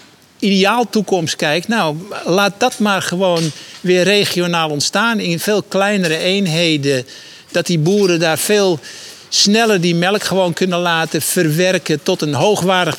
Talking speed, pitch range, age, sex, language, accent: 140 wpm, 170-200 Hz, 60-79, male, Dutch, Dutch